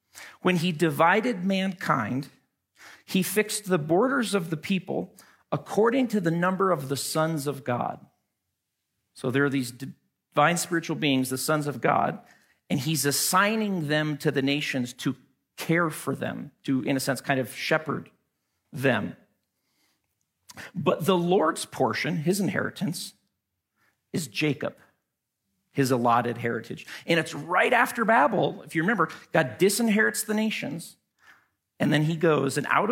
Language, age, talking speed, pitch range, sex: English, 50-69, 145 wpm, 135-185 Hz, male